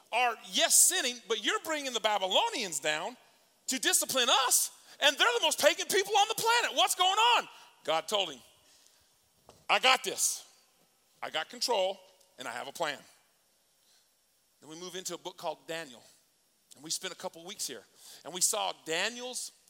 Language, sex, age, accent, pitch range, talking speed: English, male, 40-59, American, 155-235 Hz, 175 wpm